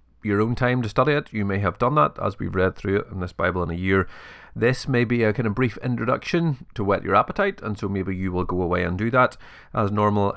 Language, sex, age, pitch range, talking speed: English, male, 30-49, 90-115 Hz, 265 wpm